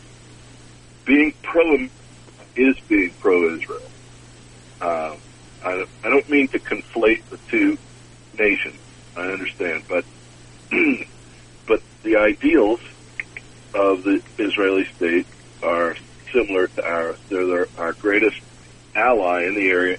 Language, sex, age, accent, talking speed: English, male, 60-79, American, 115 wpm